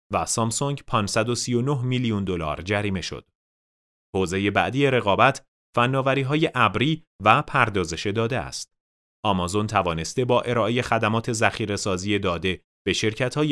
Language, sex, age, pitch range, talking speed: Persian, male, 30-49, 90-125 Hz, 110 wpm